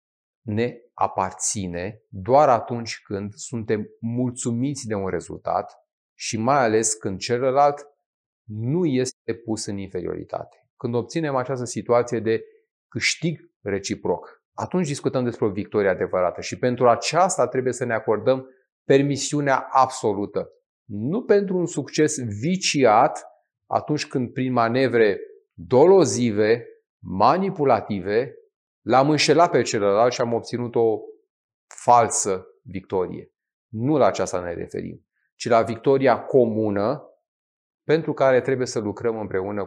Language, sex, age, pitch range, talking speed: Romanian, male, 30-49, 115-155 Hz, 120 wpm